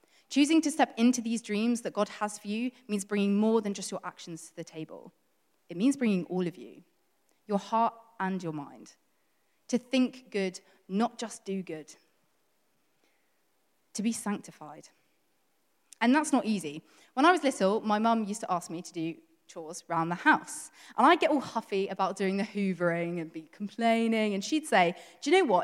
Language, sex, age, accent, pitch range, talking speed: English, female, 20-39, British, 180-260 Hz, 190 wpm